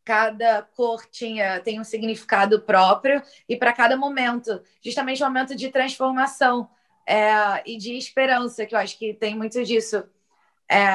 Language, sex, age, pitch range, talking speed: Portuguese, female, 20-39, 200-230 Hz, 150 wpm